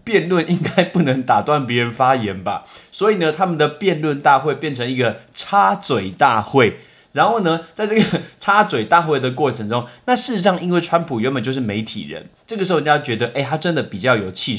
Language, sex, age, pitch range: Chinese, male, 20-39, 125-175 Hz